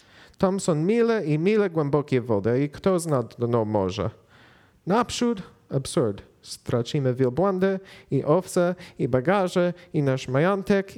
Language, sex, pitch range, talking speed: Polish, male, 125-170 Hz, 125 wpm